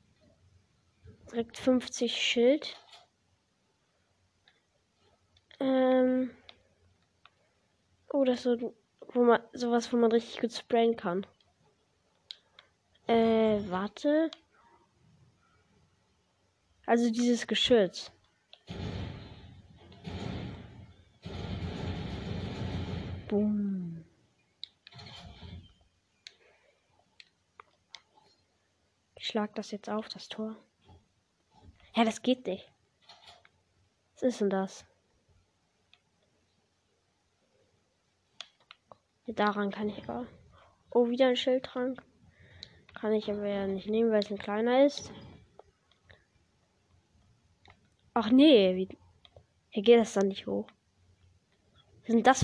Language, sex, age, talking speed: German, female, 20-39, 80 wpm